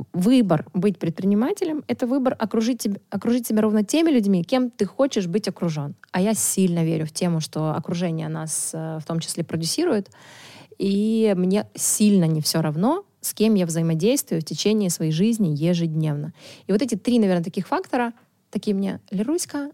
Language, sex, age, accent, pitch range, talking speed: Ukrainian, female, 20-39, native, 165-220 Hz, 165 wpm